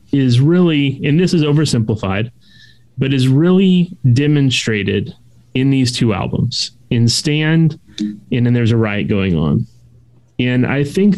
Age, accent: 30-49, American